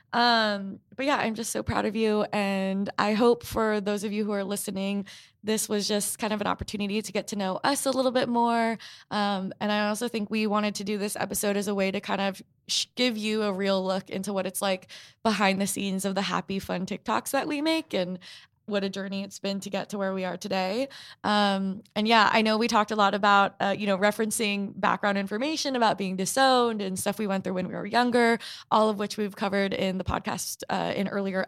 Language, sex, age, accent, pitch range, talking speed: English, female, 20-39, American, 195-230 Hz, 235 wpm